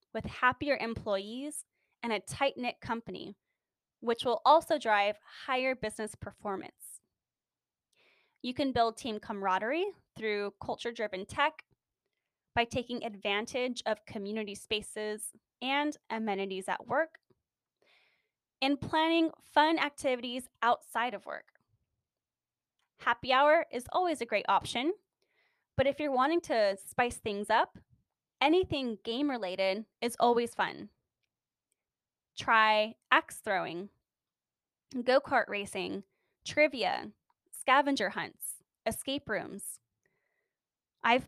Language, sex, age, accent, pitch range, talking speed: English, female, 10-29, American, 215-290 Hz, 100 wpm